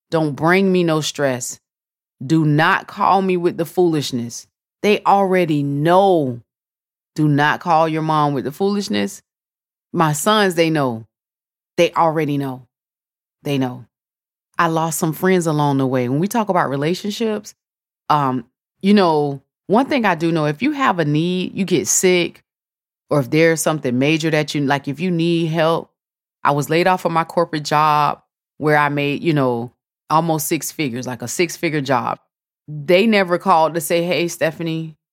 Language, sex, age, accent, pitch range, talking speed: English, female, 20-39, American, 145-180 Hz, 170 wpm